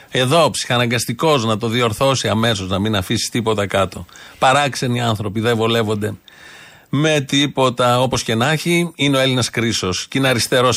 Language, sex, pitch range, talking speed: Greek, male, 105-140 Hz, 155 wpm